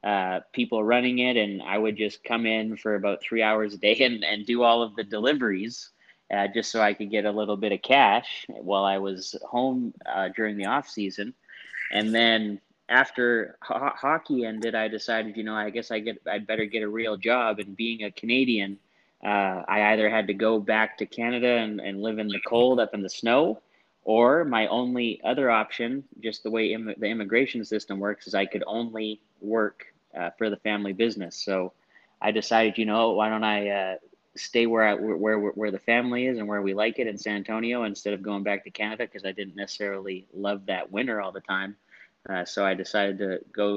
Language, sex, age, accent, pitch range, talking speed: English, male, 30-49, American, 100-115 Hz, 215 wpm